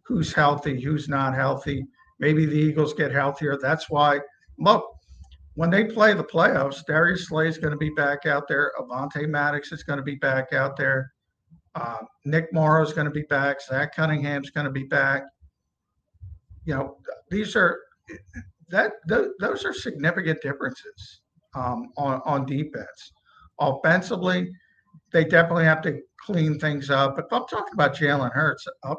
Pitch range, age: 135-165 Hz, 50-69